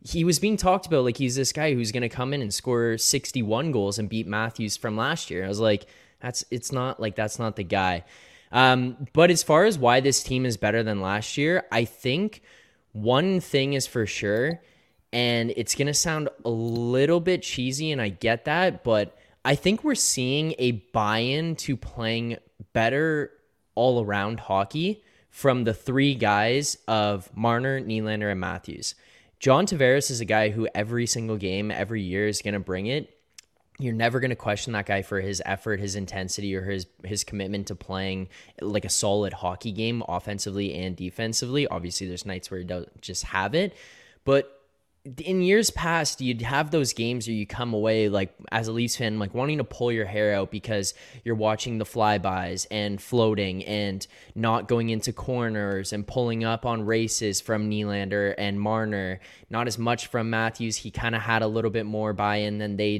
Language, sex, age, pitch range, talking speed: English, male, 10-29, 105-130 Hz, 190 wpm